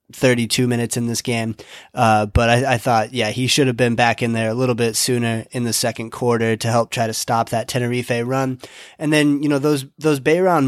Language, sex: English, male